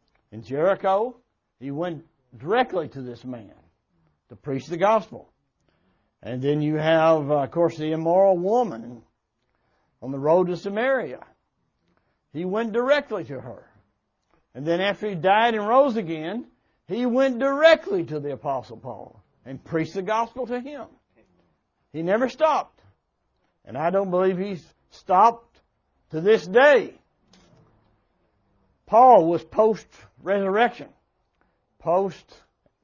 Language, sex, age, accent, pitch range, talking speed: English, male, 60-79, American, 120-200 Hz, 130 wpm